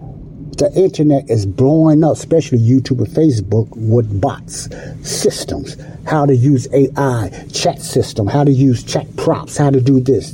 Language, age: English, 60-79